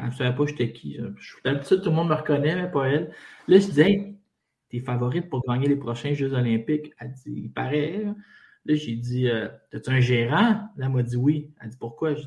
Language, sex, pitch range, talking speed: French, male, 130-160 Hz, 230 wpm